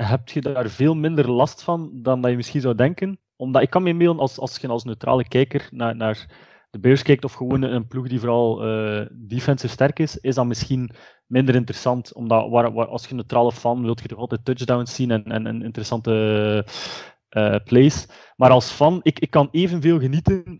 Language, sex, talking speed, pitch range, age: Dutch, male, 215 wpm, 115-135 Hz, 20-39